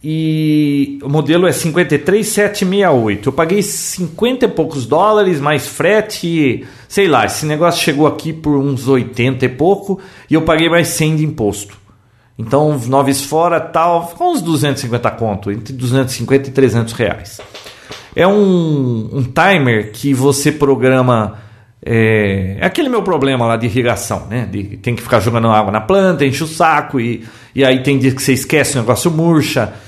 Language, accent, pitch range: Portuguese, Brazilian, 120-165 Hz